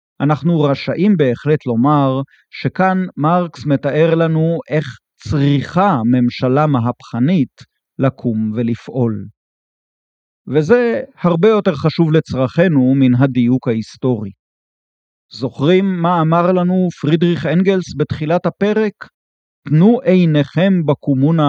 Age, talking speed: 40-59, 90 wpm